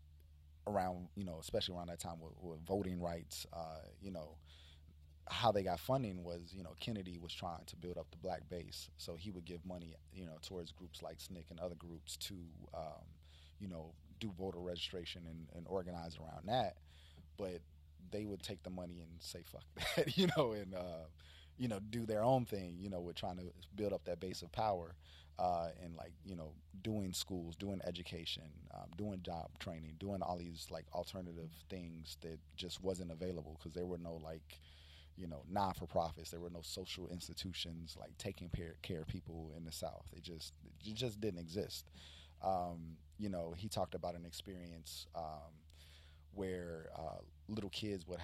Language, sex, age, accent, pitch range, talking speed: English, male, 30-49, American, 80-95 Hz, 190 wpm